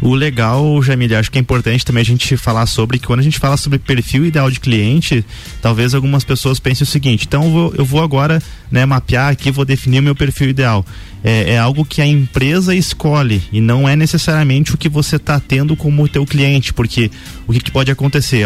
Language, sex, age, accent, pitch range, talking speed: Portuguese, male, 20-39, Brazilian, 120-150 Hz, 215 wpm